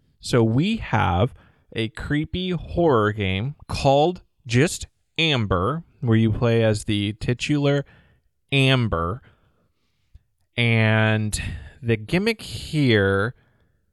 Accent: American